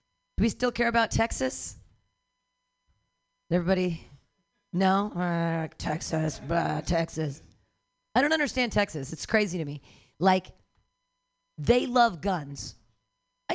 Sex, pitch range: female, 165-280 Hz